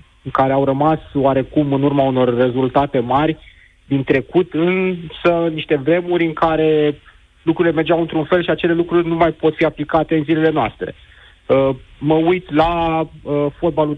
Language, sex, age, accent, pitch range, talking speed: Romanian, male, 30-49, native, 125-155 Hz, 155 wpm